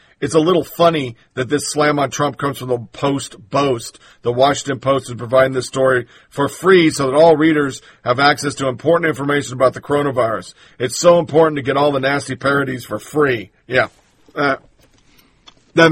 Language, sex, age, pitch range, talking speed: English, male, 50-69, 135-165 Hz, 180 wpm